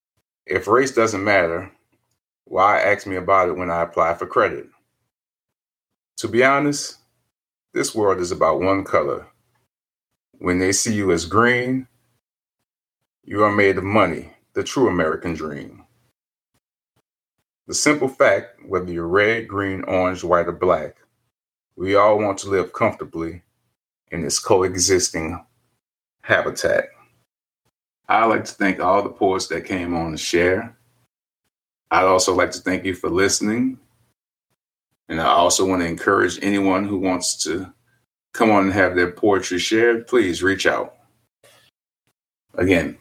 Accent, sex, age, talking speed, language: American, male, 30-49, 140 wpm, English